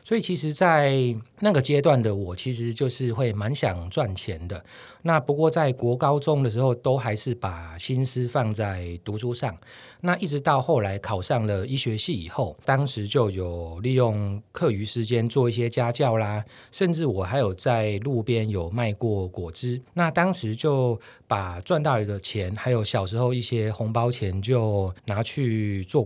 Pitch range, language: 105-135 Hz, Chinese